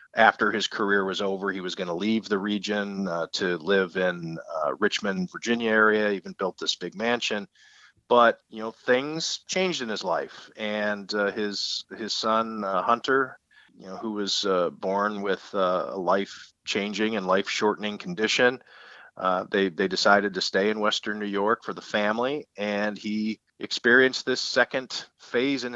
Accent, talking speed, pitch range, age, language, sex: American, 175 wpm, 100-115 Hz, 40-59, English, male